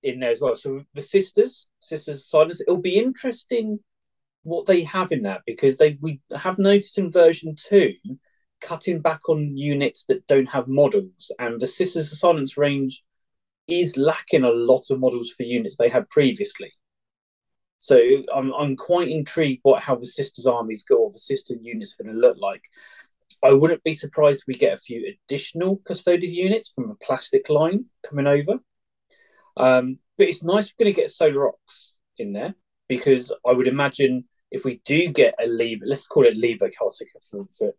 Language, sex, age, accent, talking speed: English, male, 30-49, British, 185 wpm